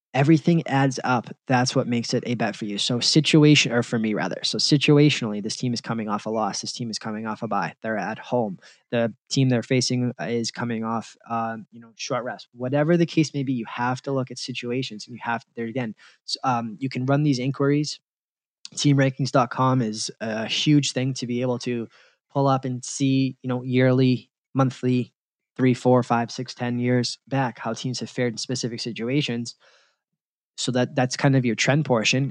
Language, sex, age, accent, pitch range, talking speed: English, male, 20-39, American, 115-135 Hz, 205 wpm